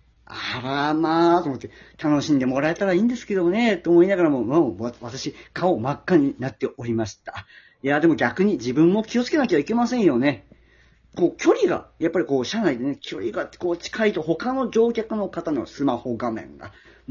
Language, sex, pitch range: Japanese, male, 130-215 Hz